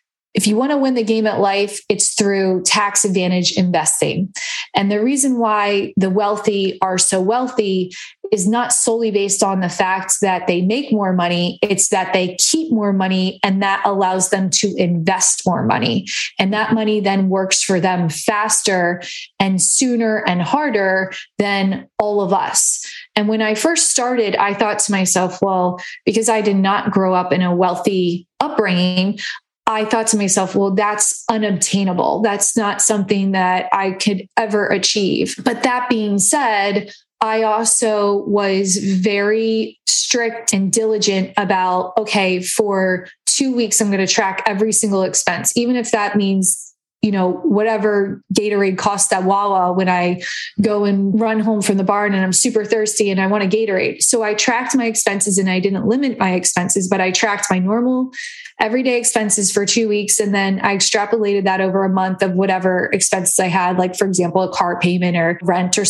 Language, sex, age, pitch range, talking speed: English, female, 20-39, 190-220 Hz, 180 wpm